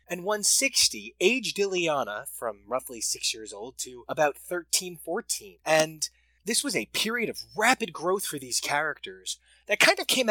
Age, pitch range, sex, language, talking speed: 20-39, 145-230 Hz, male, English, 165 wpm